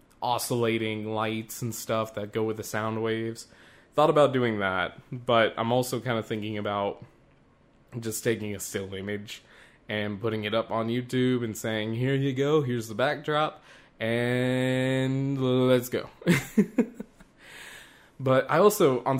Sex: male